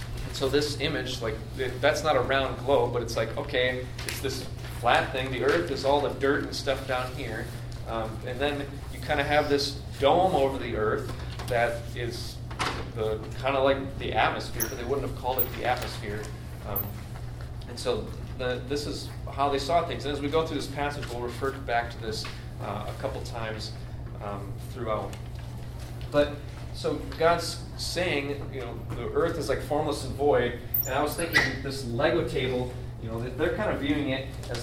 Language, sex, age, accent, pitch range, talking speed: English, male, 30-49, American, 120-135 Hz, 195 wpm